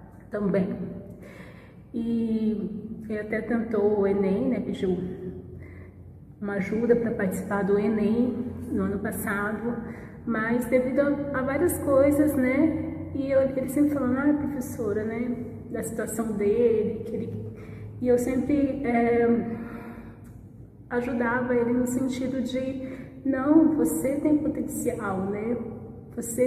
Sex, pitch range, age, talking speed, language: female, 210-255 Hz, 20-39, 115 wpm, Portuguese